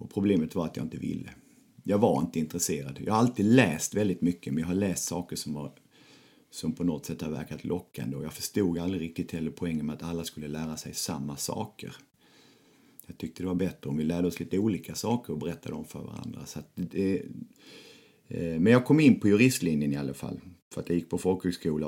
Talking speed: 225 wpm